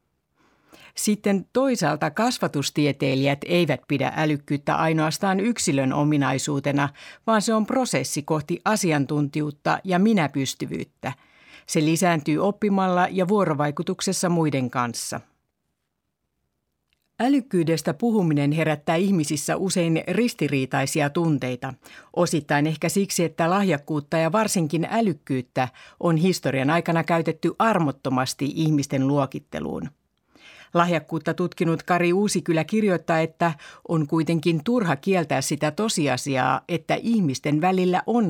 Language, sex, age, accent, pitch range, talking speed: Finnish, female, 50-69, native, 140-185 Hz, 100 wpm